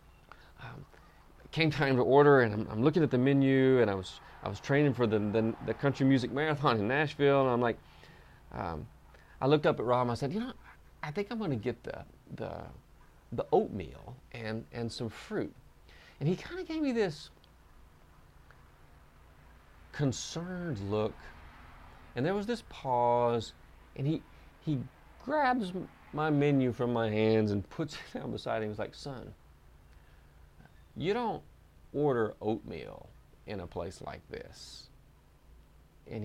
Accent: American